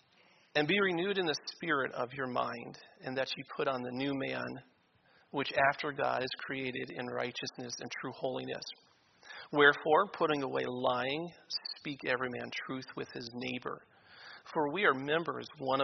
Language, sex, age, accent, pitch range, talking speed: English, male, 40-59, American, 130-150 Hz, 165 wpm